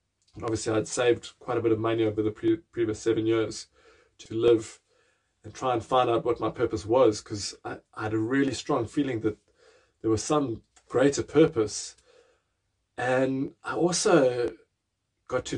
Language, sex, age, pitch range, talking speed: English, male, 20-39, 115-160 Hz, 160 wpm